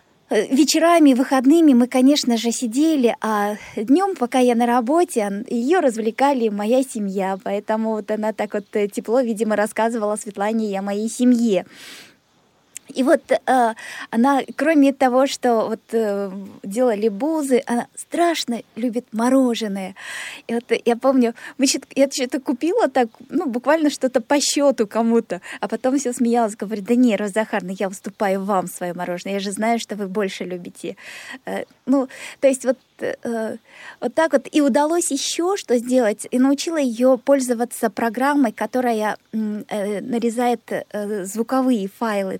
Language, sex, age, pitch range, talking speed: Russian, female, 20-39, 220-265 Hz, 145 wpm